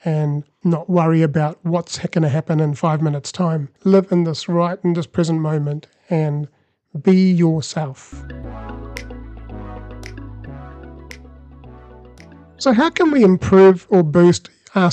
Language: English